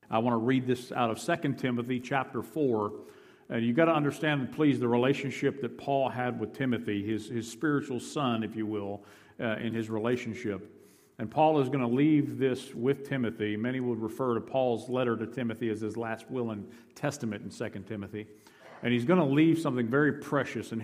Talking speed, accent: 200 wpm, American